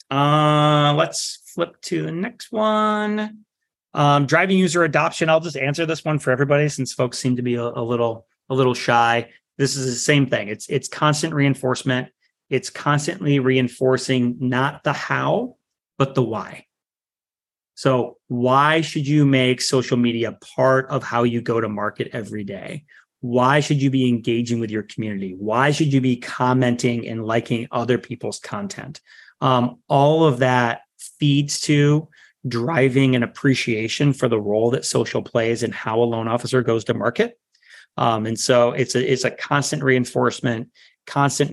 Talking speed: 165 wpm